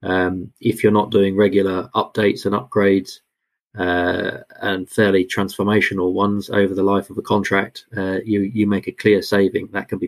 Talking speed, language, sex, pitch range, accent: 180 wpm, English, male, 95-105 Hz, British